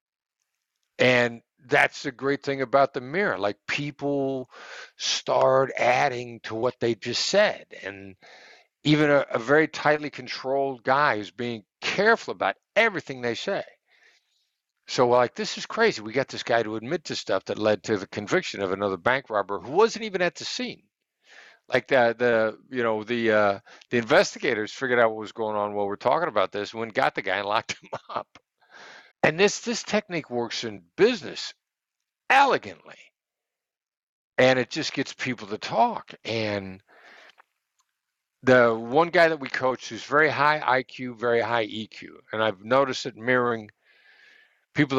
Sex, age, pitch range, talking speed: male, 60-79, 110-145 Hz, 170 wpm